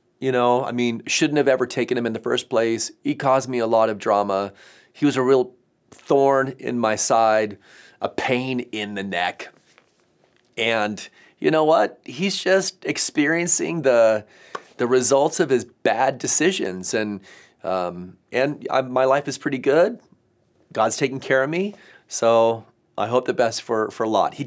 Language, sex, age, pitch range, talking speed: English, male, 40-59, 100-130 Hz, 170 wpm